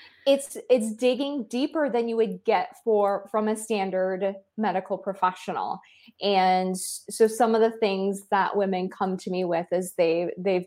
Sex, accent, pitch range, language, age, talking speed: female, American, 190-225 Hz, English, 20-39, 165 wpm